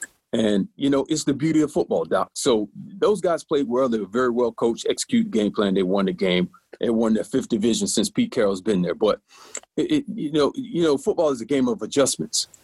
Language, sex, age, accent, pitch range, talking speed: English, male, 40-59, American, 115-160 Hz, 235 wpm